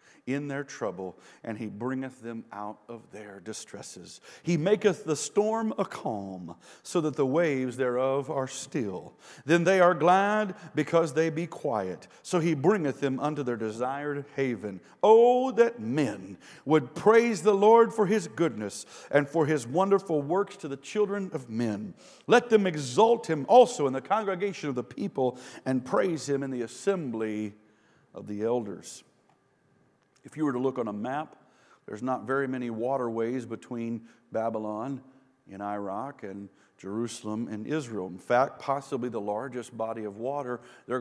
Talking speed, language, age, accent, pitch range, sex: 160 wpm, English, 50-69, American, 120-165 Hz, male